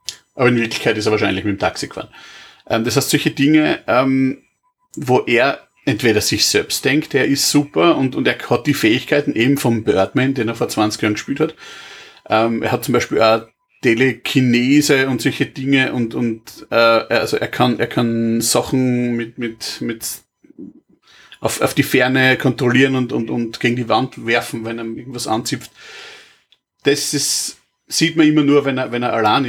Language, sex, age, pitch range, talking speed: German, male, 40-59, 115-140 Hz, 185 wpm